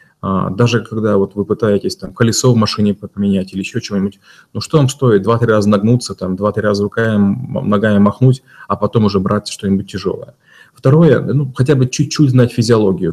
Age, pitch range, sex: 30-49, 100-125 Hz, male